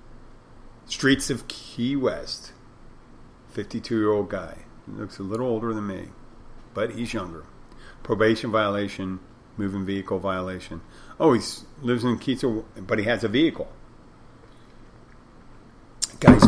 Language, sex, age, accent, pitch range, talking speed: English, male, 50-69, American, 100-120 Hz, 115 wpm